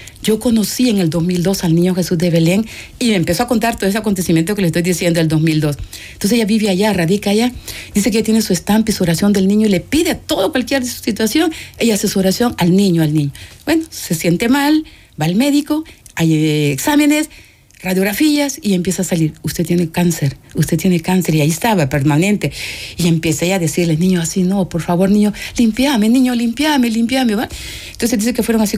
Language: Spanish